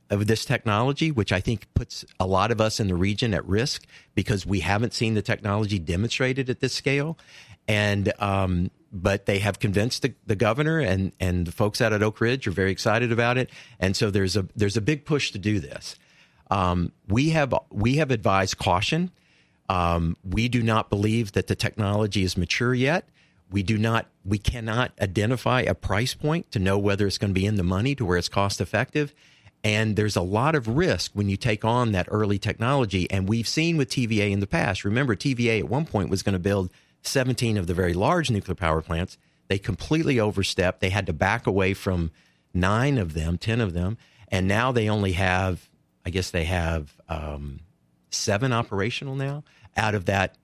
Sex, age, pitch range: male, 50-69, 95-120 Hz